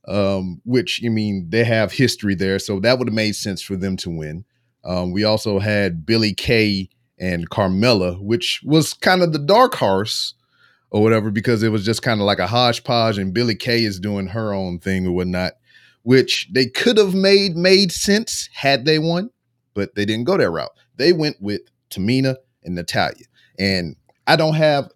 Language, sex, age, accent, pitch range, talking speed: English, male, 30-49, American, 100-125 Hz, 195 wpm